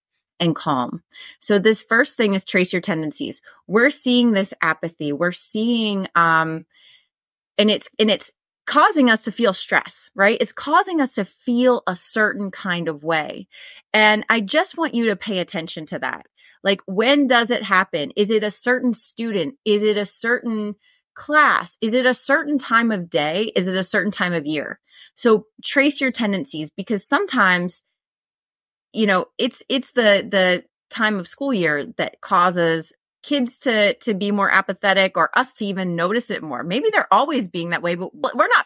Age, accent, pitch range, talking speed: 30-49, American, 180-245 Hz, 180 wpm